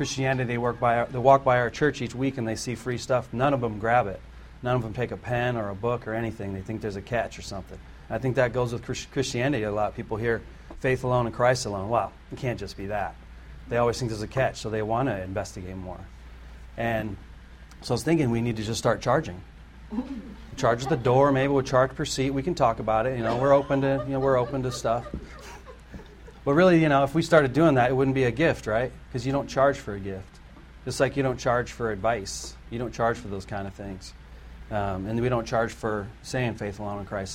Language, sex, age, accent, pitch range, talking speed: English, male, 40-59, American, 105-130 Hz, 255 wpm